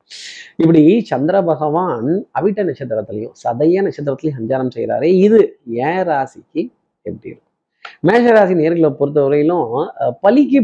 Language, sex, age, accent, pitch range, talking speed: Tamil, male, 30-49, native, 135-185 Hz, 105 wpm